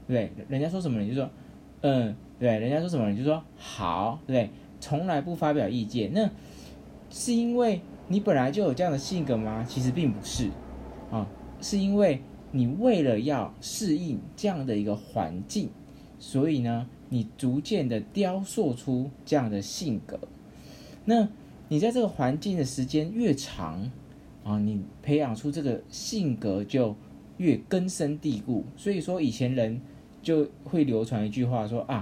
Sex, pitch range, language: male, 115-170 Hz, Chinese